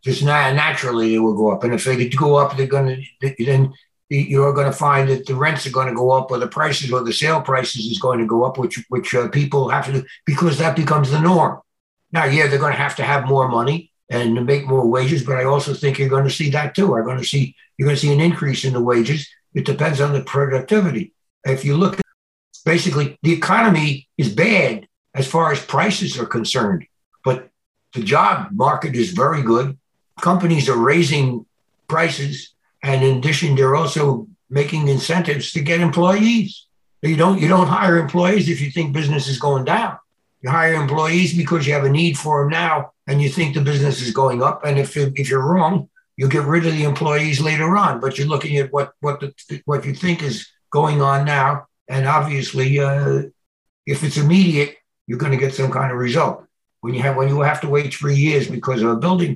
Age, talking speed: 60-79, 220 wpm